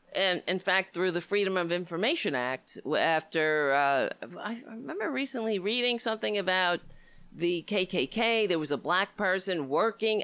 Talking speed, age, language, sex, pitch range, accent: 145 wpm, 40-59, English, female, 165-230 Hz, American